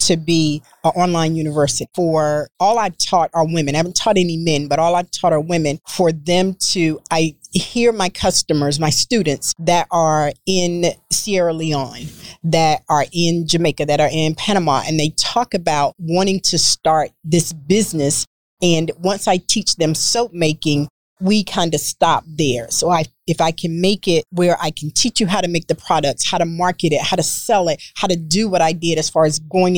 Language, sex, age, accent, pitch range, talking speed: English, female, 40-59, American, 160-185 Hz, 200 wpm